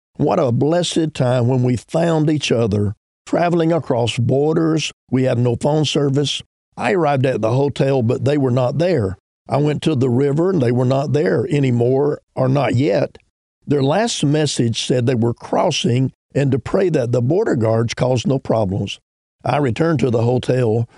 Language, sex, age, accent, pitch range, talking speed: English, male, 50-69, American, 120-150 Hz, 180 wpm